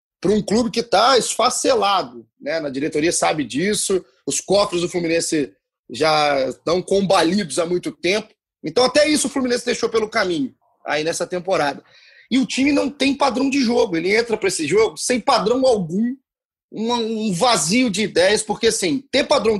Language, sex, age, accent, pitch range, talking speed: Portuguese, male, 30-49, Brazilian, 185-265 Hz, 170 wpm